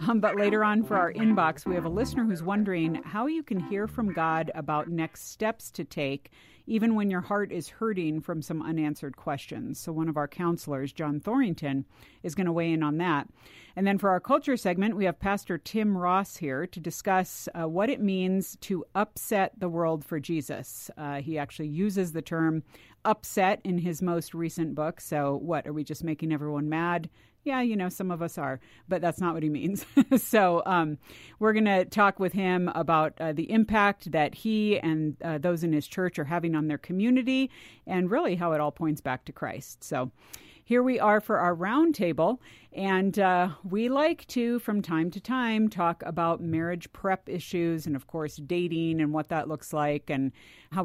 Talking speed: 205 wpm